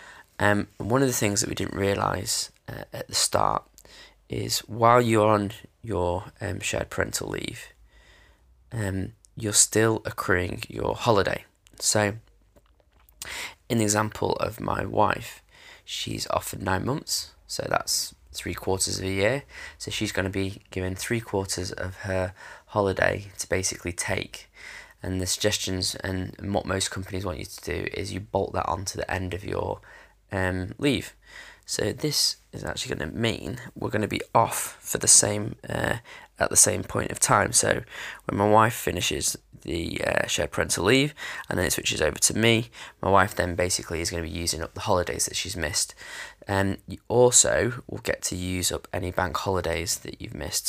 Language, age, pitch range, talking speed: English, 10-29, 90-105 Hz, 175 wpm